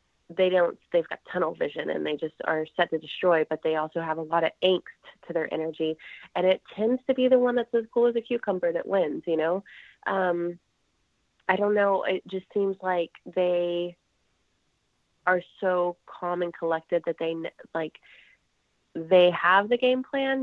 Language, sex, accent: English, female, American